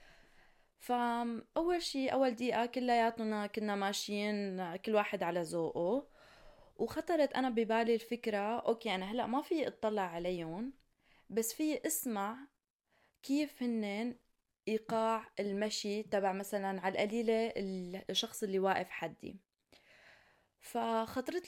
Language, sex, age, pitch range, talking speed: Arabic, female, 20-39, 200-250 Hz, 110 wpm